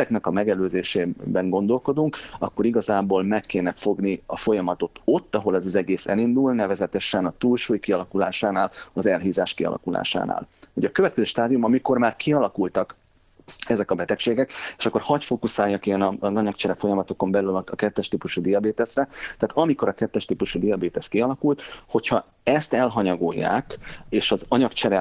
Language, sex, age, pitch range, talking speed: Hungarian, male, 30-49, 95-120 Hz, 145 wpm